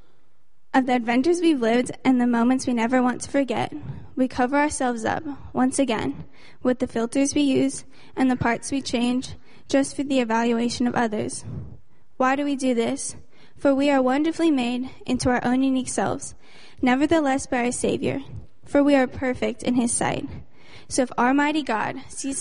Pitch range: 240-280 Hz